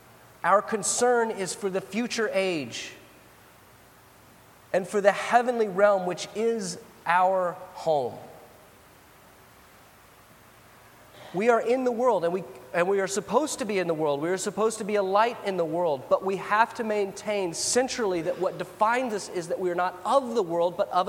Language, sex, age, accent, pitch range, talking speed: English, male, 30-49, American, 155-215 Hz, 175 wpm